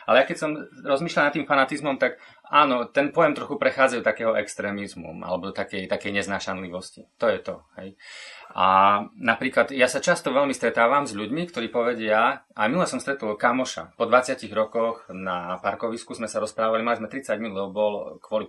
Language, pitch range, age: Slovak, 100-140 Hz, 30-49